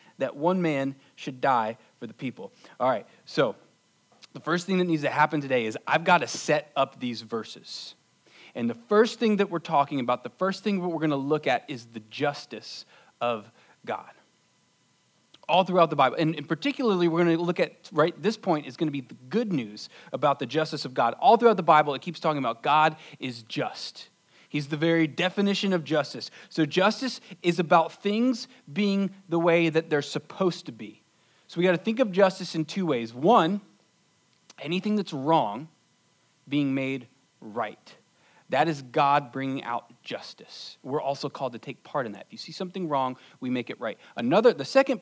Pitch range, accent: 140-185 Hz, American